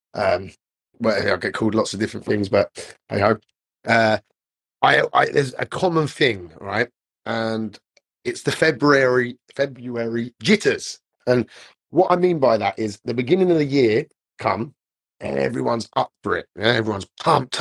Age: 30-49